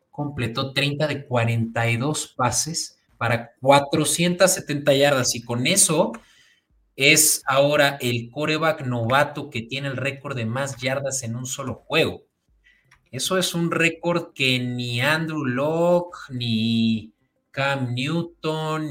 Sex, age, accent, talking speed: male, 30-49, Mexican, 120 wpm